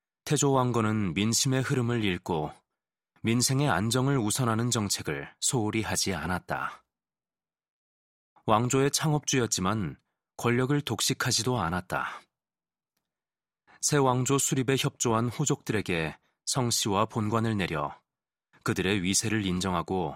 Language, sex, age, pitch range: Korean, male, 30-49, 105-130 Hz